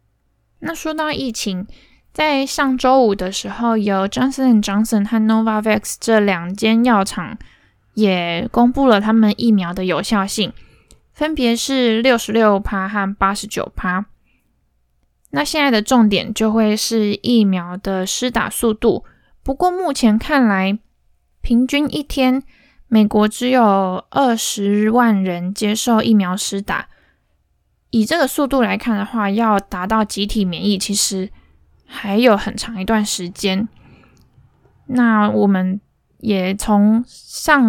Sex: female